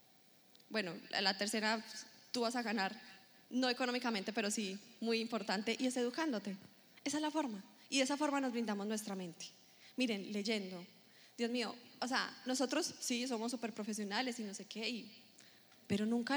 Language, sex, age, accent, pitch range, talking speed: Spanish, female, 20-39, Colombian, 215-260 Hz, 170 wpm